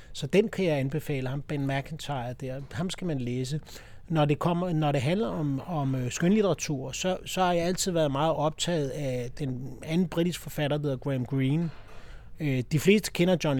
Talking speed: 190 wpm